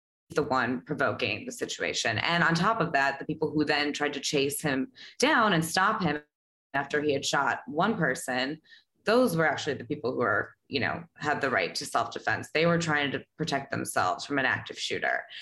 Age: 20-39